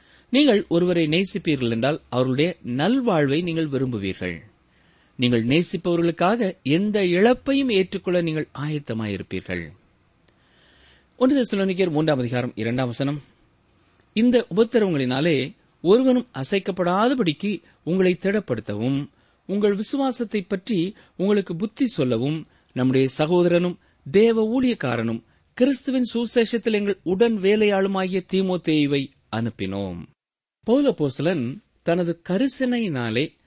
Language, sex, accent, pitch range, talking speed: Tamil, male, native, 120-205 Hz, 75 wpm